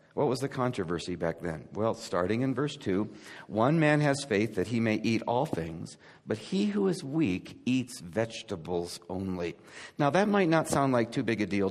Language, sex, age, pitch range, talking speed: English, male, 50-69, 115-170 Hz, 200 wpm